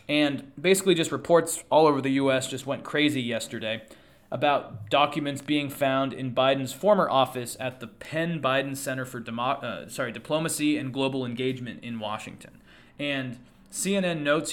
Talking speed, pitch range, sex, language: 155 wpm, 125-155 Hz, male, English